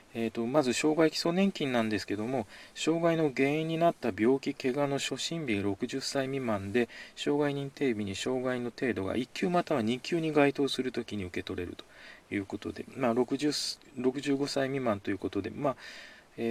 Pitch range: 110-140 Hz